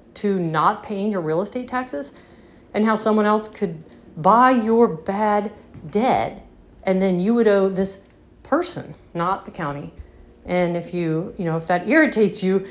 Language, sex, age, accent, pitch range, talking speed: English, female, 40-59, American, 185-245 Hz, 165 wpm